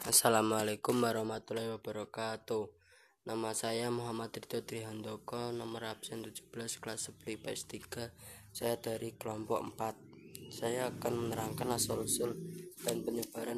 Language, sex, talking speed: Indonesian, female, 105 wpm